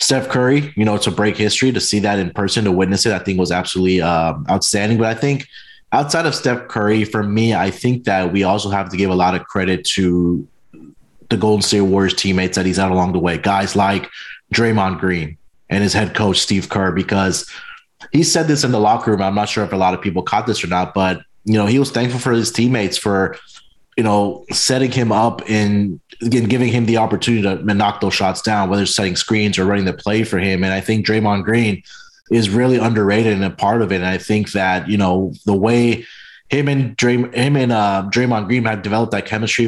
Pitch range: 95-110 Hz